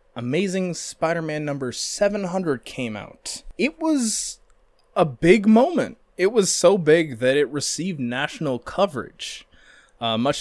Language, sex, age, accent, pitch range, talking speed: English, male, 20-39, American, 120-175 Hz, 125 wpm